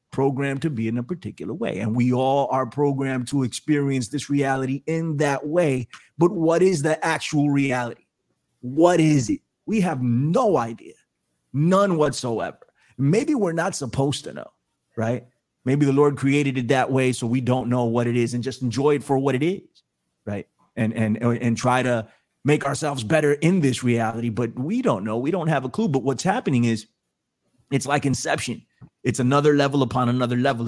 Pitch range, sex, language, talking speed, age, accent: 125-170 Hz, male, English, 190 wpm, 30-49, American